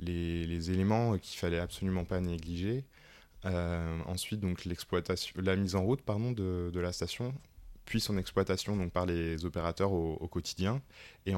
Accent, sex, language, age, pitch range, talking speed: French, male, French, 20-39, 85-100 Hz, 175 wpm